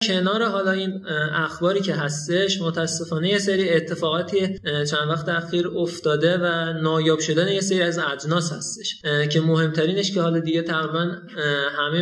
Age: 20-39